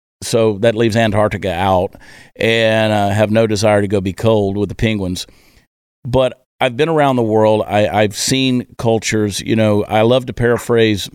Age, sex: 50-69, male